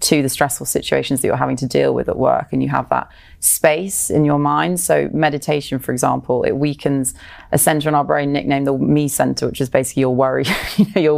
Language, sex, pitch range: English, female, 135-150 Hz